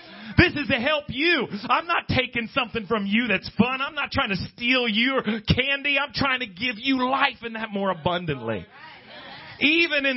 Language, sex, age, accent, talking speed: English, male, 40-59, American, 190 wpm